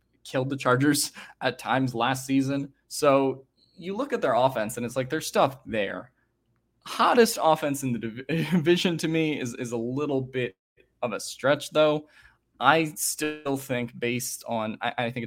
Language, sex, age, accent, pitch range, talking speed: English, male, 20-39, American, 115-135 Hz, 170 wpm